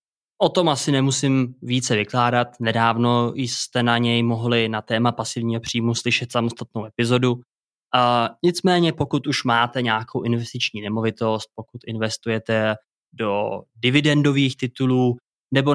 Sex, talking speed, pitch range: male, 120 wpm, 115-130 Hz